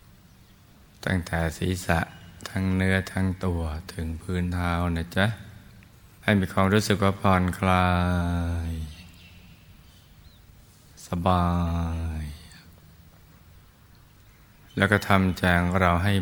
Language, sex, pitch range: Thai, male, 85-100 Hz